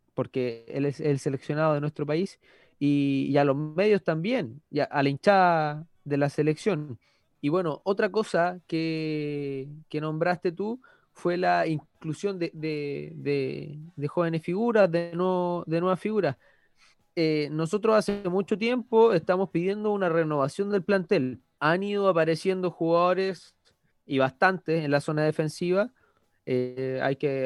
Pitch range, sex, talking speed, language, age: 150-195 Hz, male, 150 wpm, Spanish, 20-39